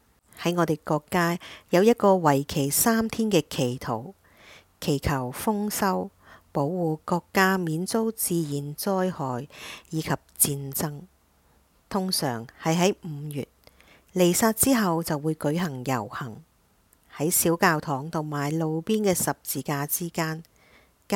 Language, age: English, 50-69